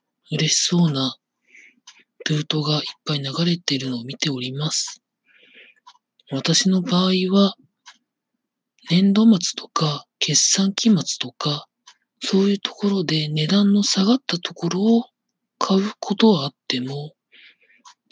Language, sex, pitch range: Japanese, male, 145-200 Hz